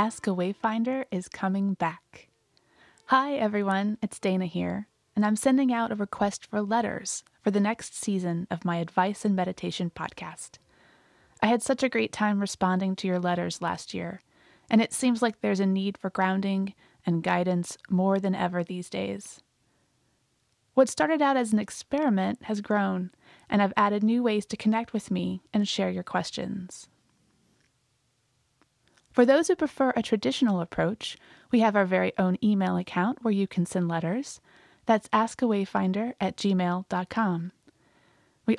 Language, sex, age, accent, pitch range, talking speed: English, female, 20-39, American, 180-225 Hz, 160 wpm